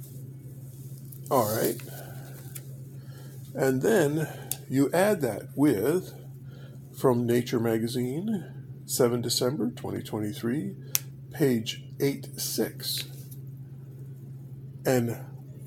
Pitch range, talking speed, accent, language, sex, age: 130-135 Hz, 65 wpm, American, English, male, 50-69